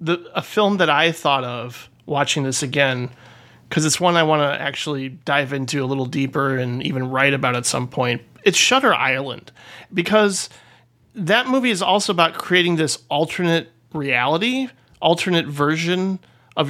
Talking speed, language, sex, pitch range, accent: 160 wpm, English, male, 140-180 Hz, American